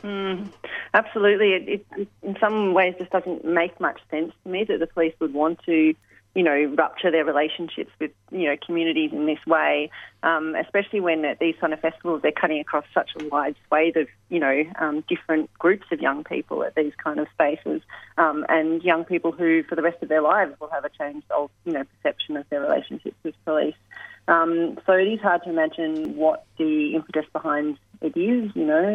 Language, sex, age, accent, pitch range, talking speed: English, female, 30-49, Australian, 155-190 Hz, 205 wpm